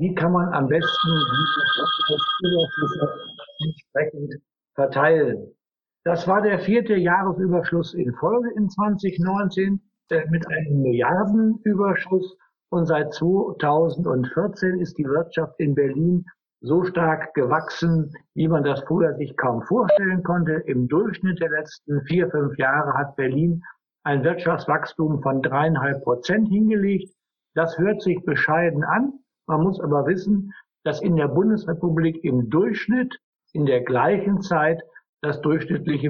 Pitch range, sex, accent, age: 145-185 Hz, male, German, 60-79